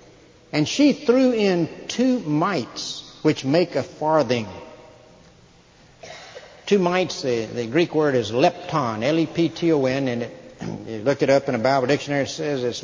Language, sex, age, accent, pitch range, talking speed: English, male, 60-79, American, 130-170 Hz, 145 wpm